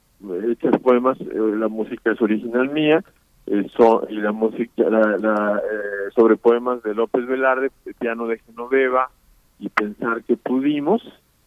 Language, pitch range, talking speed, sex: Spanish, 110-135 Hz, 145 wpm, male